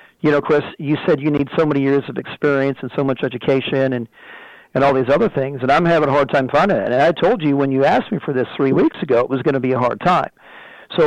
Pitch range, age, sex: 130-145 Hz, 50-69, male